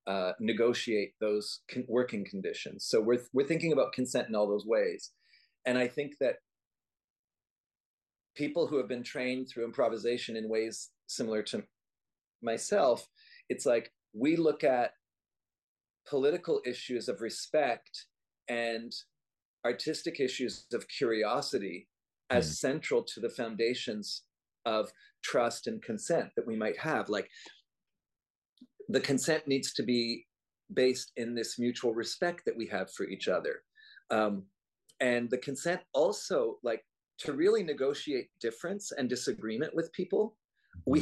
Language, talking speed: English, 130 wpm